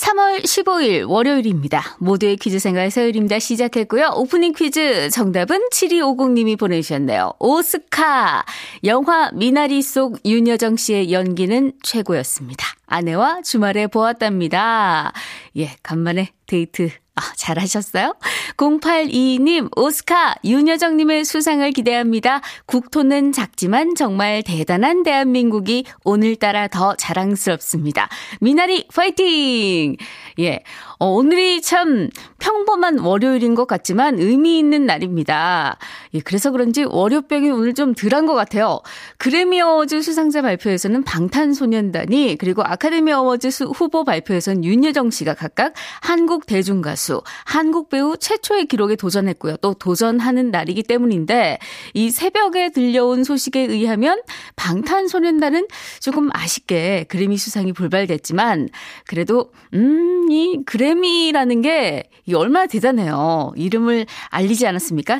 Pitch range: 190-305 Hz